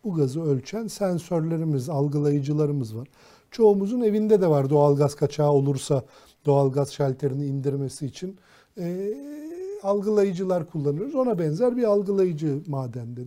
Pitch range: 140-185 Hz